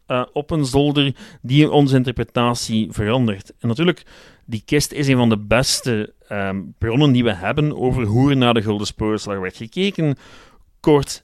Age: 40-59